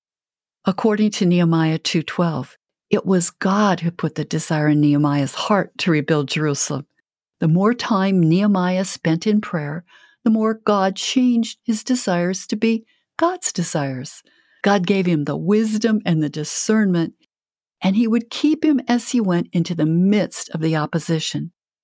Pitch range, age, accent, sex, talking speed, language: 165-230 Hz, 60-79, American, female, 155 wpm, English